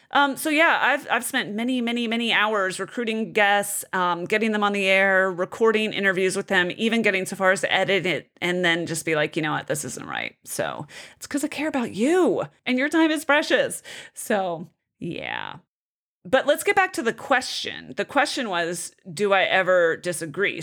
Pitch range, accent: 180-245 Hz, American